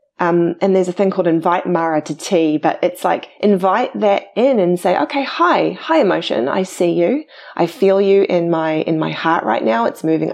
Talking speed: 215 wpm